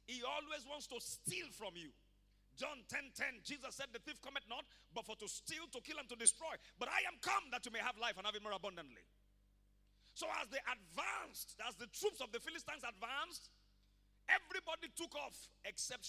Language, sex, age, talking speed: English, male, 40-59, 200 wpm